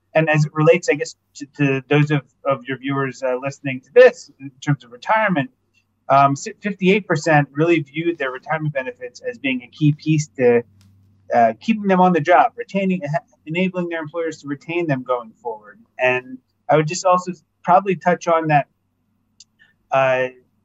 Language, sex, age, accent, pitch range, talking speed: English, male, 30-49, American, 125-165 Hz, 170 wpm